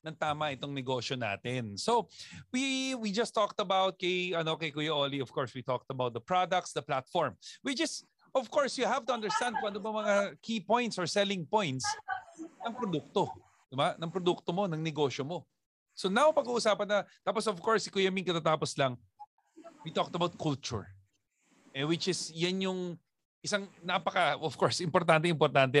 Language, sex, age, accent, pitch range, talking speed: Filipino, male, 40-59, native, 135-205 Hz, 180 wpm